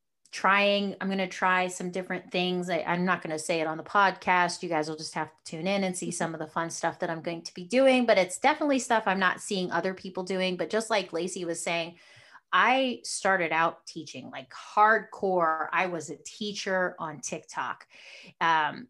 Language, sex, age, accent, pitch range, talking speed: English, female, 30-49, American, 170-200 Hz, 210 wpm